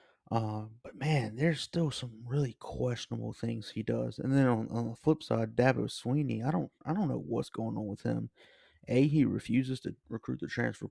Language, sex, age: English, male, 30-49